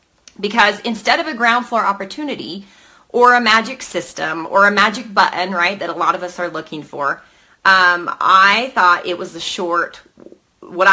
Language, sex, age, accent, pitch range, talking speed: English, female, 30-49, American, 175-225 Hz, 175 wpm